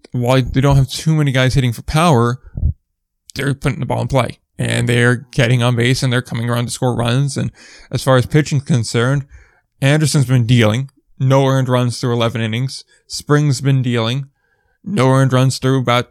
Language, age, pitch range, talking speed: English, 20-39, 120-145 Hz, 190 wpm